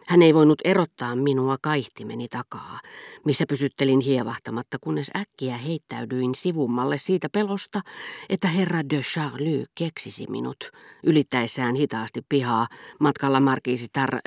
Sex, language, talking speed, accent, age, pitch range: female, Finnish, 115 wpm, native, 50-69, 125-165 Hz